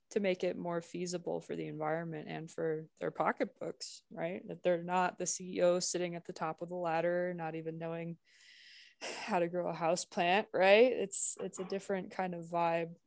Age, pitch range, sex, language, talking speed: 20-39, 170-190 Hz, female, English, 195 wpm